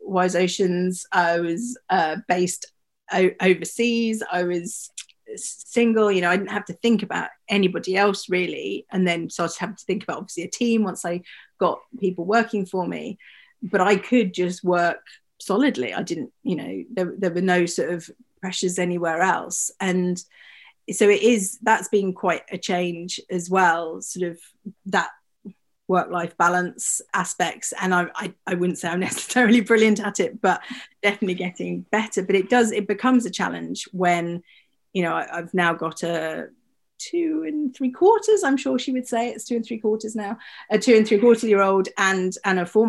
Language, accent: English, British